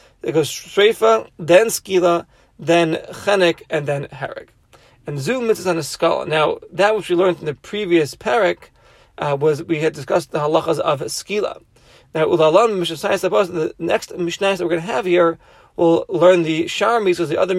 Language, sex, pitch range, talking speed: English, male, 155-205 Hz, 175 wpm